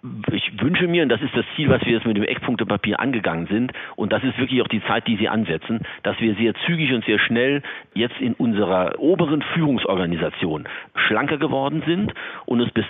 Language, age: German, 50-69